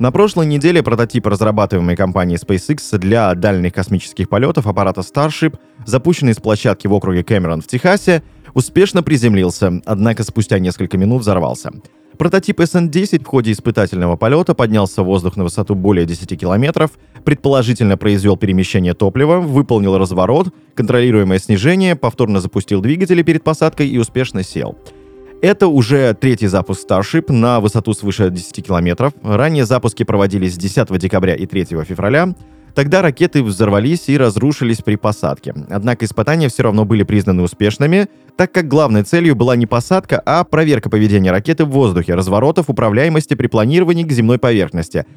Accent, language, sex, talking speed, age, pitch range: native, Russian, male, 145 wpm, 20-39, 100-145 Hz